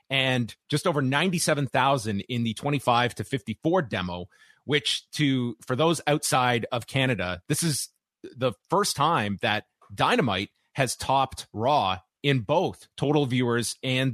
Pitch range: 110-145 Hz